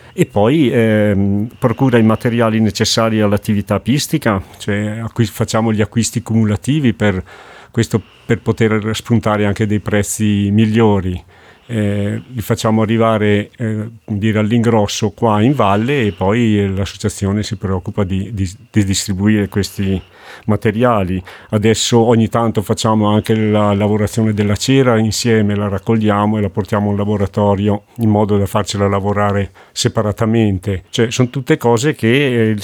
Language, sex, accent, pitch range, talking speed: Italian, male, native, 105-115 Hz, 130 wpm